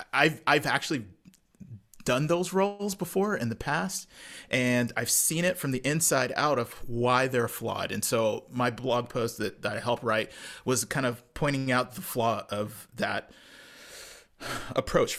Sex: male